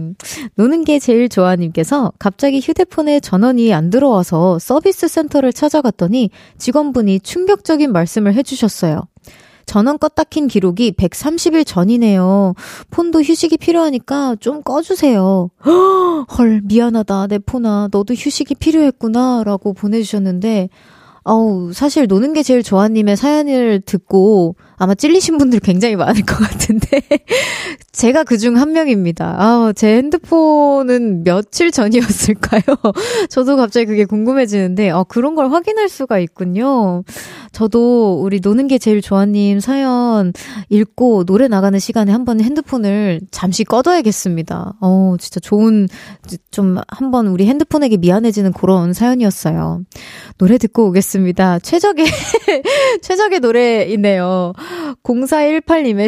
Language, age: Korean, 20-39